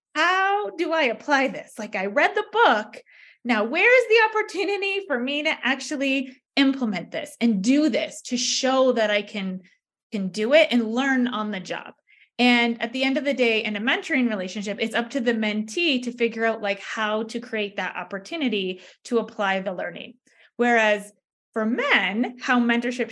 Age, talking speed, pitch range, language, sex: 20-39, 180 wpm, 215-280 Hz, English, female